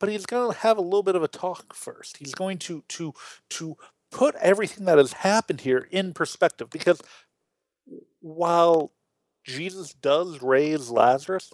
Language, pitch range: English, 120-180 Hz